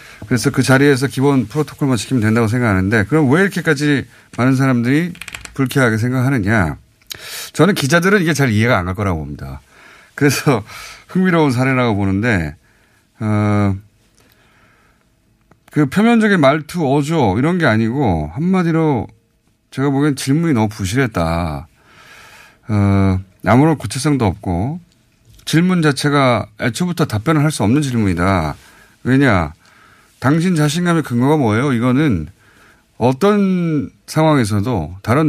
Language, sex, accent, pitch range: Korean, male, native, 105-155 Hz